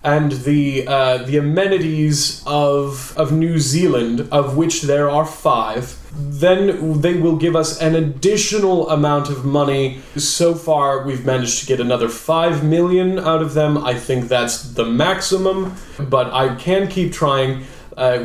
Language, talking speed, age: English, 155 wpm, 30-49